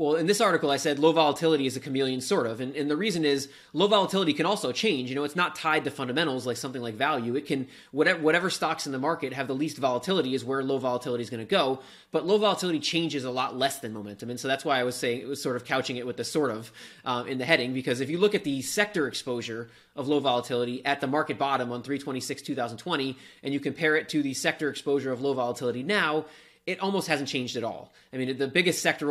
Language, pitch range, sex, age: English, 130-155 Hz, male, 20-39